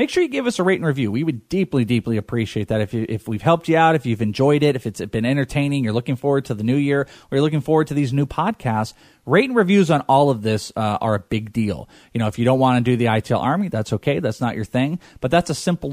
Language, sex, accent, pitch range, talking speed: English, male, American, 115-155 Hz, 295 wpm